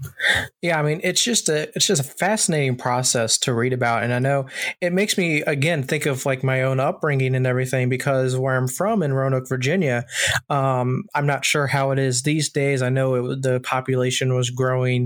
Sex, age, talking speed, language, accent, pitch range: male, 20-39, 205 wpm, English, American, 130-150 Hz